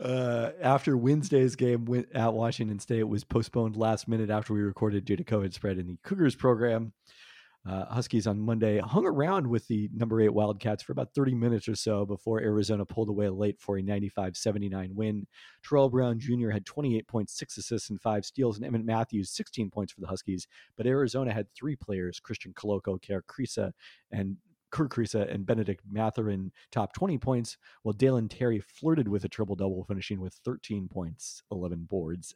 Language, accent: English, American